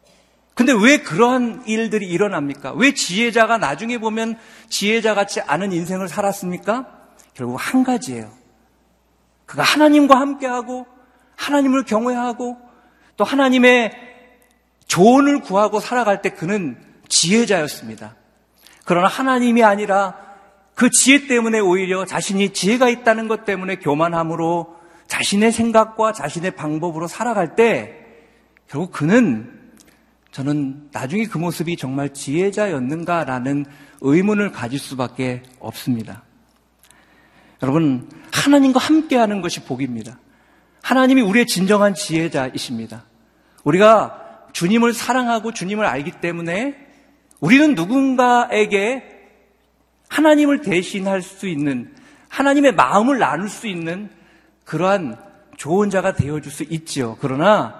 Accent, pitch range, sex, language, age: native, 165-245 Hz, male, Korean, 50-69